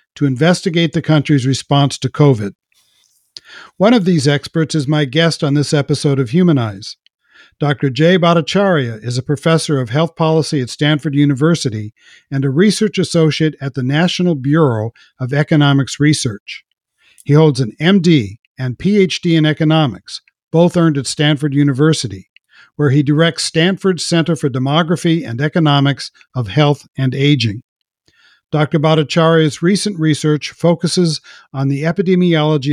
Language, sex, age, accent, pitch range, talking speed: English, male, 60-79, American, 140-165 Hz, 140 wpm